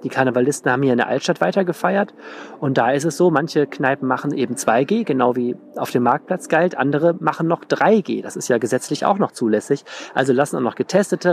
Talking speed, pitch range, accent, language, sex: 210 wpm, 125-145 Hz, German, German, male